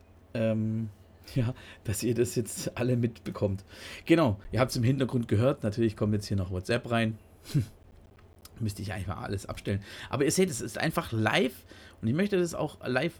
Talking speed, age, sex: 185 wpm, 40-59, male